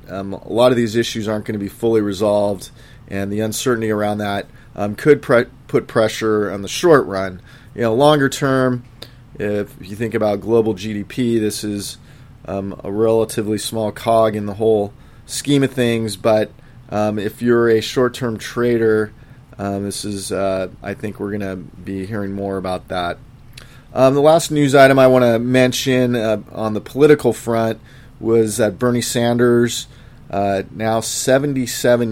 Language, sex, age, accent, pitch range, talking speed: English, male, 30-49, American, 105-125 Hz, 170 wpm